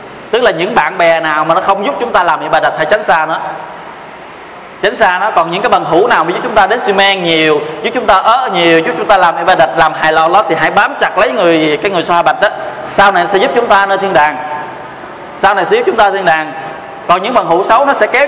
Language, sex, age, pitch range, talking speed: Vietnamese, male, 20-39, 160-205 Hz, 300 wpm